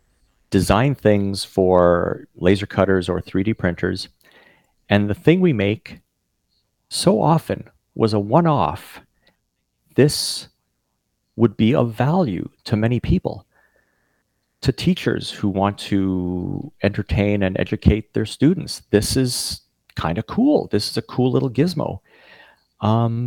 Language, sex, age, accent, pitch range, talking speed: English, male, 40-59, American, 95-130 Hz, 125 wpm